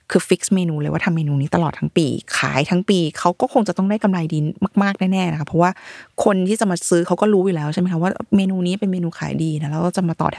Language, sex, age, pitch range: Thai, female, 20-39, 165-220 Hz